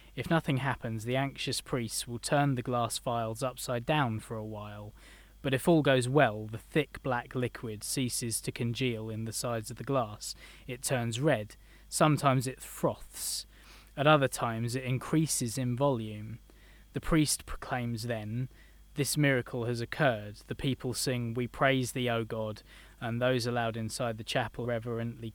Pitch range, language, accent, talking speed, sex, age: 115-135 Hz, English, British, 165 wpm, male, 20-39